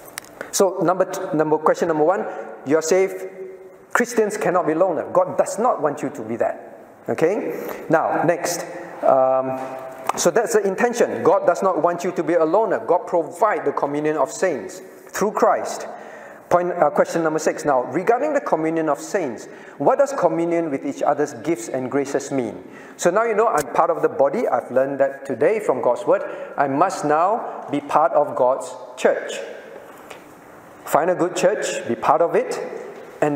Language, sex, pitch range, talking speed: English, male, 150-245 Hz, 180 wpm